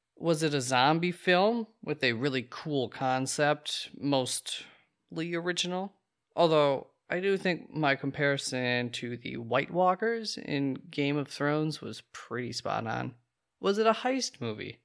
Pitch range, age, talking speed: 125-155 Hz, 20-39, 140 wpm